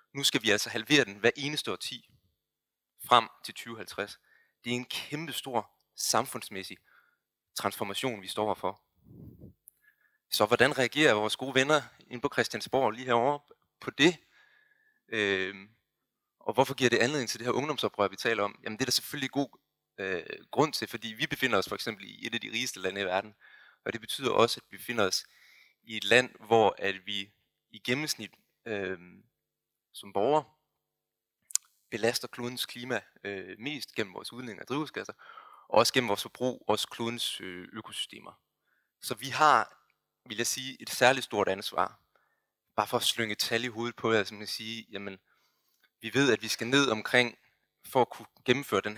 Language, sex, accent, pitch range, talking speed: Danish, male, native, 105-130 Hz, 175 wpm